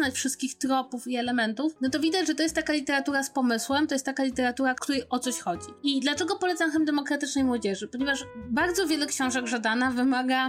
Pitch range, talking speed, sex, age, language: 225-265 Hz, 200 wpm, female, 20-39, Polish